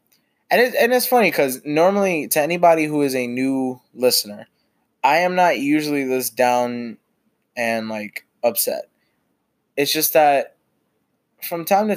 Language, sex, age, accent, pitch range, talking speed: English, male, 20-39, American, 115-140 Hz, 145 wpm